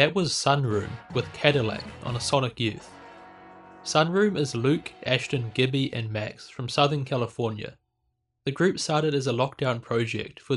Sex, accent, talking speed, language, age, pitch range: male, Australian, 155 wpm, English, 20-39, 115-145 Hz